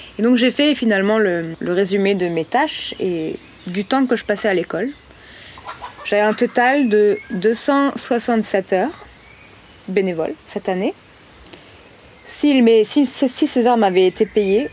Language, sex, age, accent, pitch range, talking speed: French, female, 20-39, French, 195-235 Hz, 145 wpm